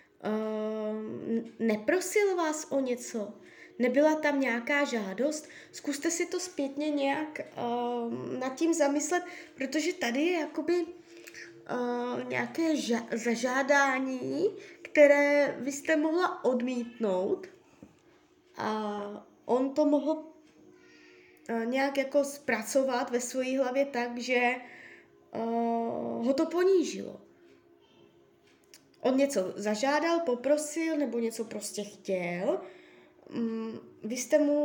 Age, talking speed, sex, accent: 20-39, 100 wpm, female, native